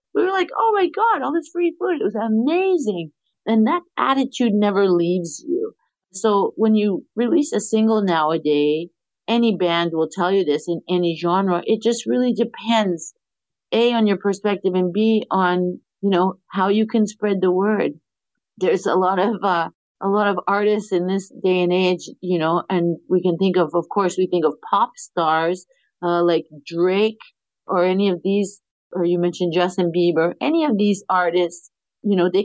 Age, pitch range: 50-69, 180-220 Hz